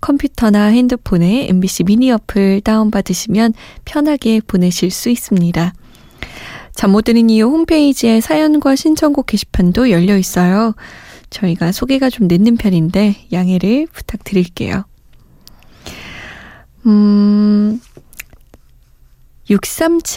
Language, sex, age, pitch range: Korean, female, 20-39, 185-250 Hz